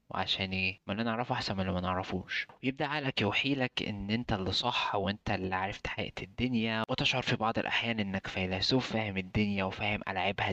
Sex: male